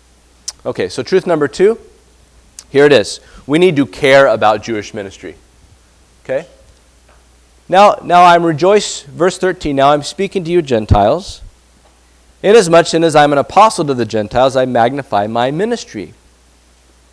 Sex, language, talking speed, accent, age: male, English, 145 wpm, American, 40-59